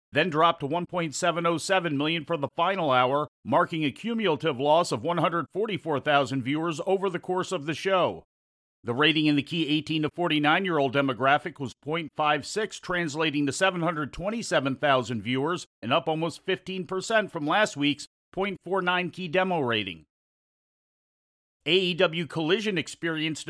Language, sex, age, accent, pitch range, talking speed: English, male, 50-69, American, 145-180 Hz, 130 wpm